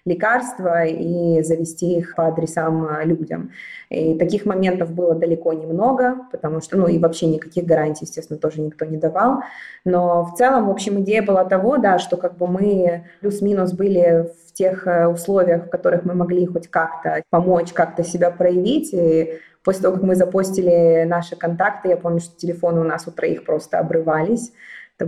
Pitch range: 165-185 Hz